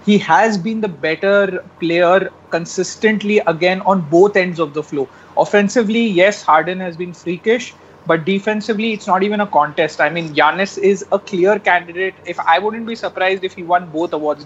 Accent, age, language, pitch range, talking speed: Indian, 30-49, English, 170-210 Hz, 185 wpm